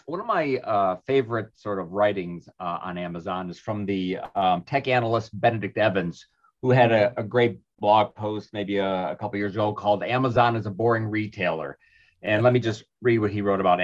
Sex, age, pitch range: male, 30-49, 105-135 Hz